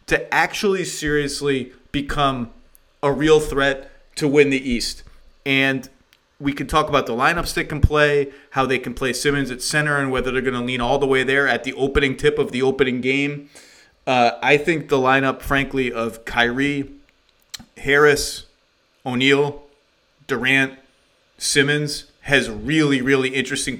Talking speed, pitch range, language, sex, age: 155 wpm, 125-145 Hz, English, male, 30-49